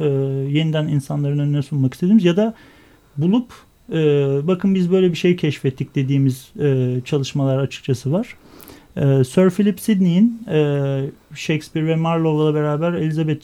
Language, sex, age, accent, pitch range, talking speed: Turkish, male, 40-59, native, 140-175 Hz, 140 wpm